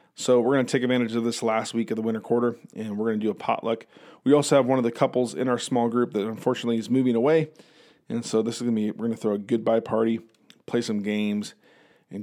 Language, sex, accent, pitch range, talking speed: English, male, American, 115-140 Hz, 265 wpm